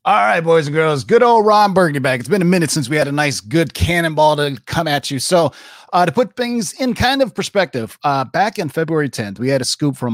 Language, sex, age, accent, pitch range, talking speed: English, male, 30-49, American, 120-160 Hz, 260 wpm